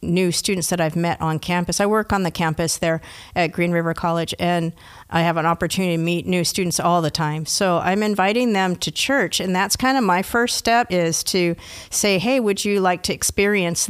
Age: 50-69